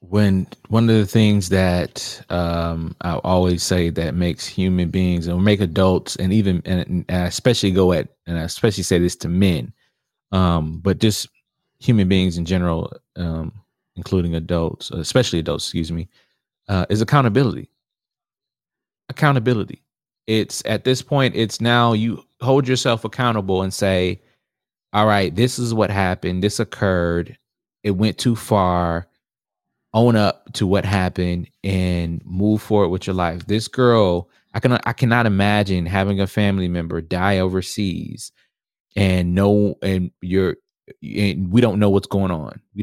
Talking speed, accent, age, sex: 155 wpm, American, 30-49, male